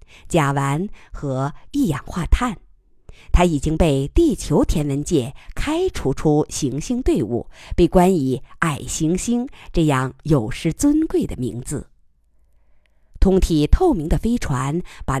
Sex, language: female, Chinese